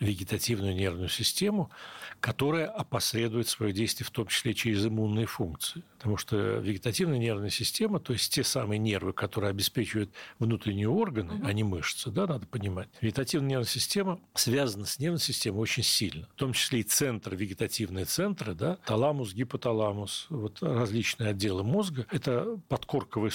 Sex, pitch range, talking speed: male, 105-135 Hz, 140 wpm